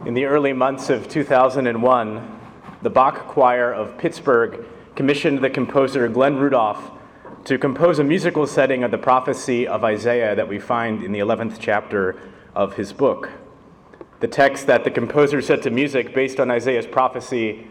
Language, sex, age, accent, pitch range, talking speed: English, male, 30-49, American, 110-135 Hz, 165 wpm